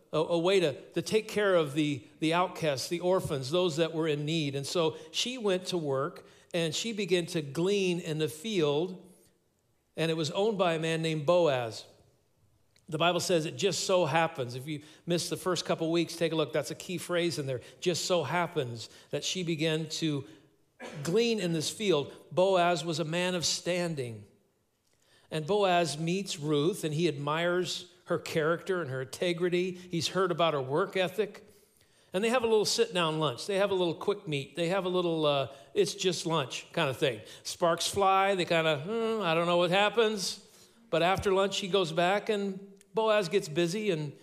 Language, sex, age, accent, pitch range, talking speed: English, male, 50-69, American, 155-190 Hz, 195 wpm